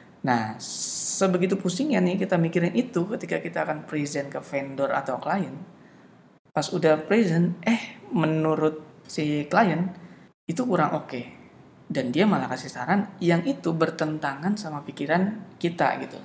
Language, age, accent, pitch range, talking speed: Indonesian, 20-39, native, 130-180 Hz, 140 wpm